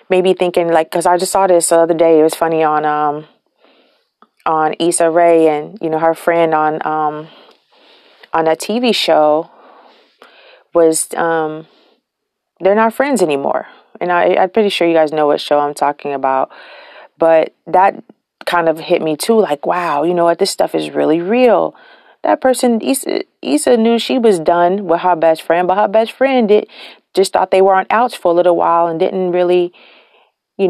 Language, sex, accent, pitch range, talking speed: English, female, American, 165-205 Hz, 190 wpm